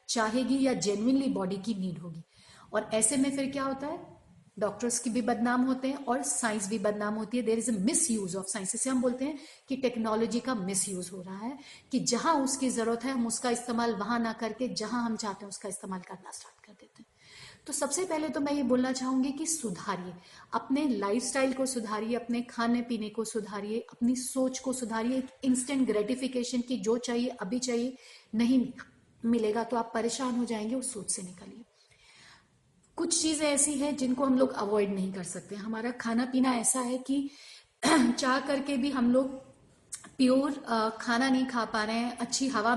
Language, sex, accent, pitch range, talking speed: Hindi, female, native, 220-260 Hz, 190 wpm